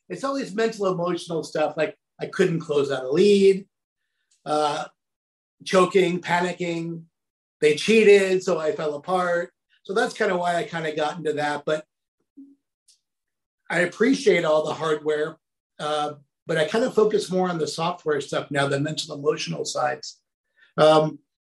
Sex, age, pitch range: male, 50-69, 150-190 Hz